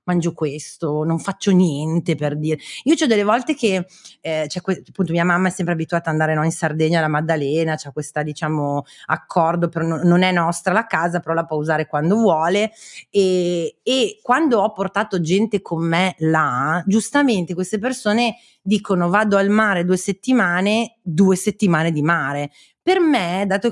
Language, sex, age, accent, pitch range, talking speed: Italian, female, 30-49, native, 170-220 Hz, 170 wpm